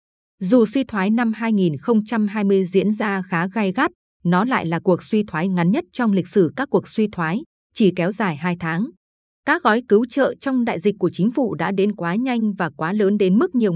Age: 20-39